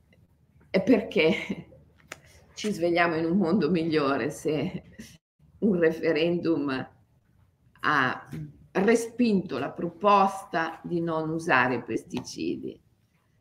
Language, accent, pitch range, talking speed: Italian, native, 145-190 Hz, 80 wpm